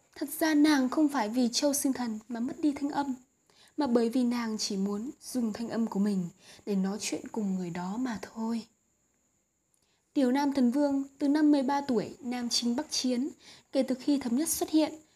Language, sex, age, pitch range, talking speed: Vietnamese, female, 20-39, 225-290 Hz, 205 wpm